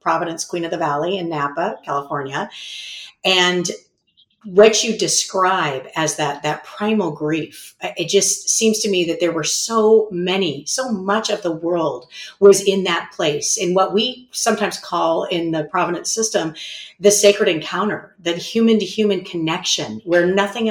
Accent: American